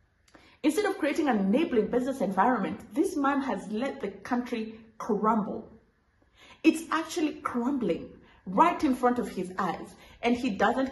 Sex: female